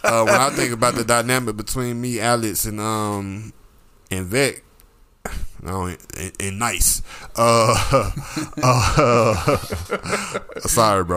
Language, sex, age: English, male, 20-39